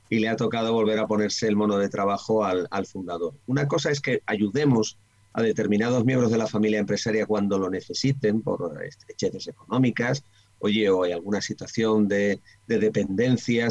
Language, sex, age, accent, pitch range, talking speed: Spanish, male, 40-59, Spanish, 105-125 Hz, 175 wpm